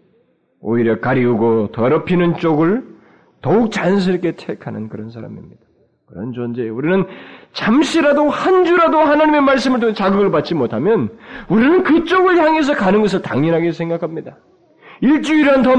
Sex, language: male, Korean